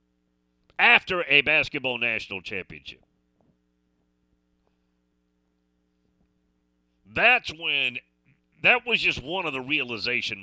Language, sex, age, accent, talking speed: English, male, 40-59, American, 80 wpm